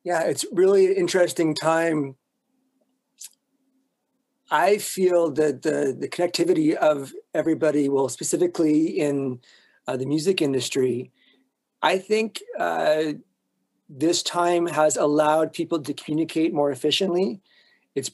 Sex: male